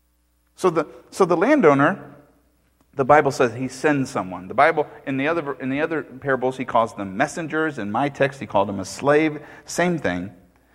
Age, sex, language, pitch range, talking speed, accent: 40-59, male, English, 100-155 Hz, 190 wpm, American